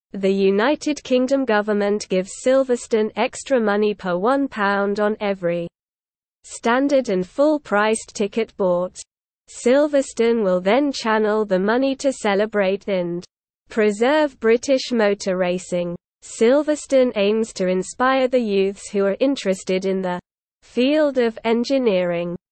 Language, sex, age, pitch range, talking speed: English, female, 20-39, 195-255 Hz, 115 wpm